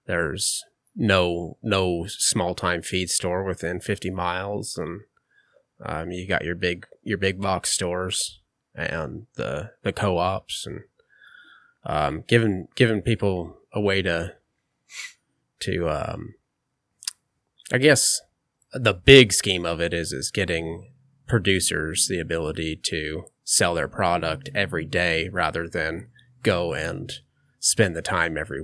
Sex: male